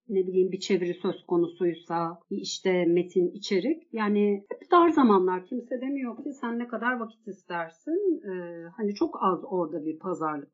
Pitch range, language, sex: 190-285 Hz, Turkish, female